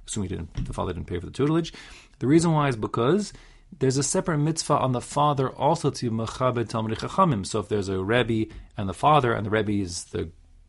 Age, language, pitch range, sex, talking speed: 40-59, English, 100-125 Hz, male, 200 wpm